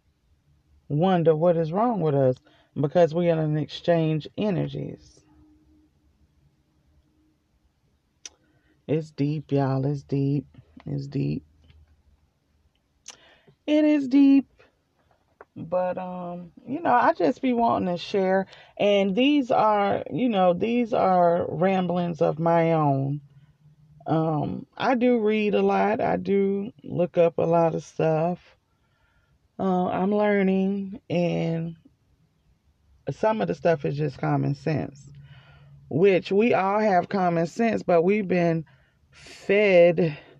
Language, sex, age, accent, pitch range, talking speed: English, female, 30-49, American, 135-185 Hz, 115 wpm